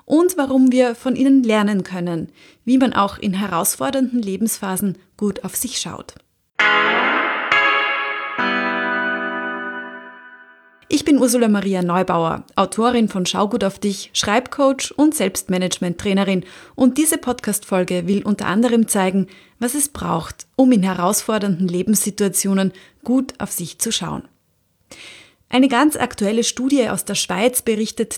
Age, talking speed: 30-49, 125 wpm